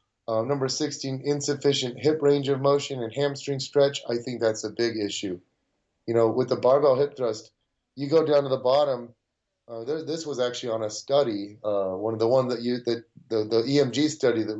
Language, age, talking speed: English, 30-49, 210 wpm